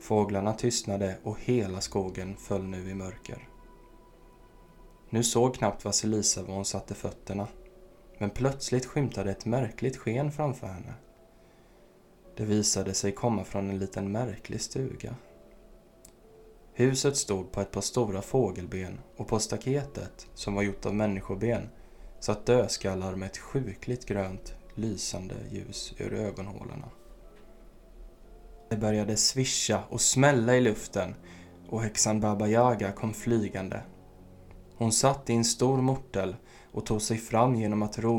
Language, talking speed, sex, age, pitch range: Swedish, 135 wpm, male, 20-39, 100-120 Hz